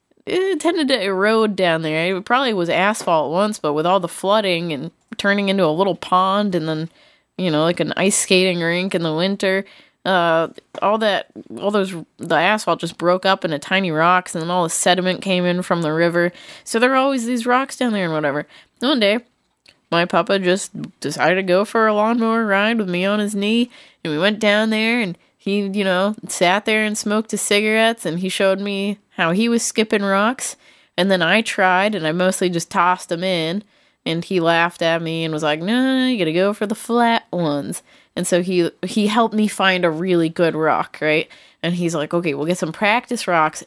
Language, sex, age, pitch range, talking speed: English, female, 20-39, 175-230 Hz, 215 wpm